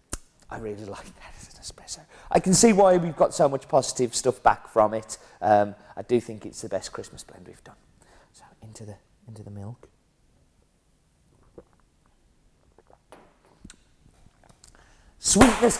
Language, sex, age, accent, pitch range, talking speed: English, male, 40-59, British, 125-195 Hz, 145 wpm